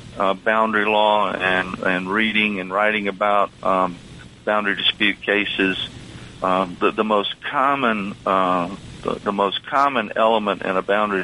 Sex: male